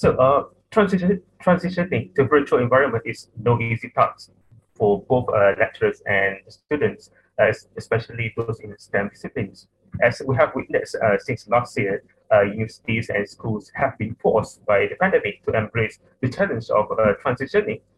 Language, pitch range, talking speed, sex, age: English, 110-140 Hz, 160 wpm, male, 20-39